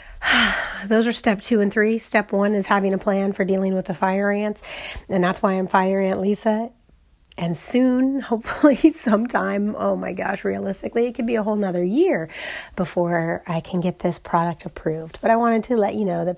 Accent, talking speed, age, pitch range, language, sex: American, 200 wpm, 30-49, 175-220 Hz, English, female